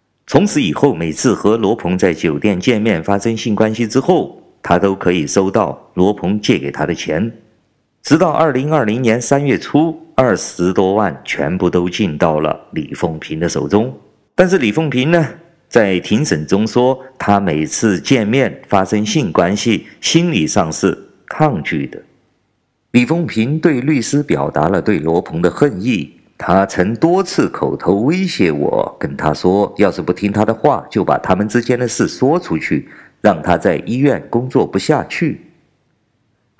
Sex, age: male, 50-69